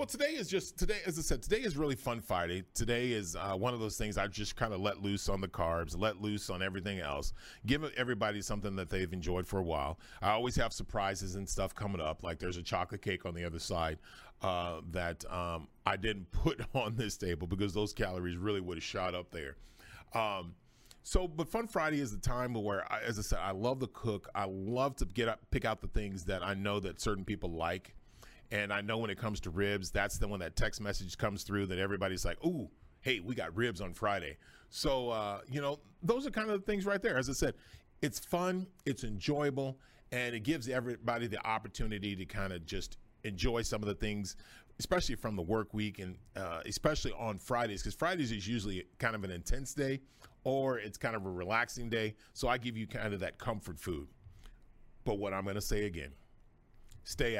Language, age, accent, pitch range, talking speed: English, 40-59, American, 95-125 Hz, 220 wpm